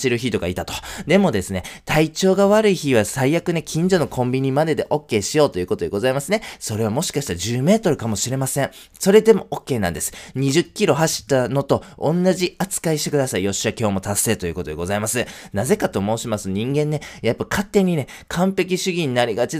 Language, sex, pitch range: Japanese, male, 100-150 Hz